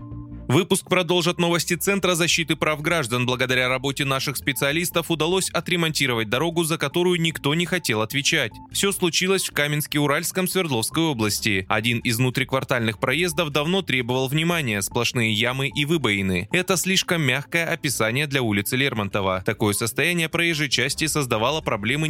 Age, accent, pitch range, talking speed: 20-39, native, 115-165 Hz, 135 wpm